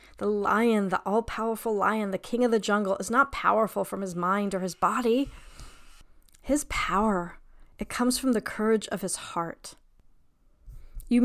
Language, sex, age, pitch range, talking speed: English, female, 40-59, 190-235 Hz, 160 wpm